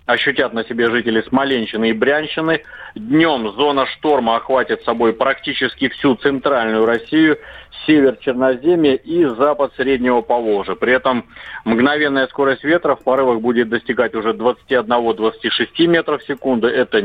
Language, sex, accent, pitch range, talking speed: Russian, male, native, 115-145 Hz, 130 wpm